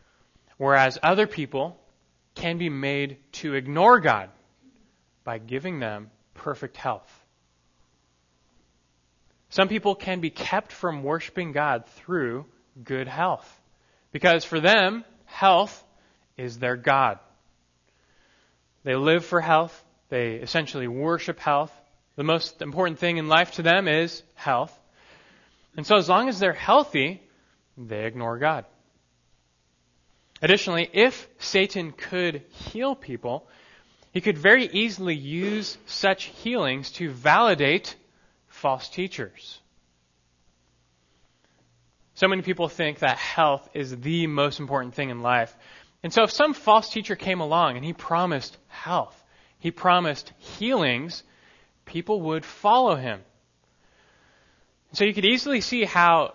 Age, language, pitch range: 20-39, English, 120-180 Hz